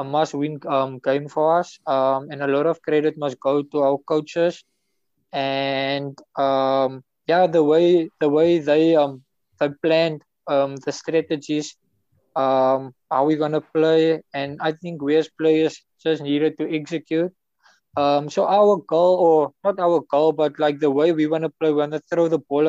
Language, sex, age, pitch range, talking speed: English, male, 20-39, 140-165 Hz, 180 wpm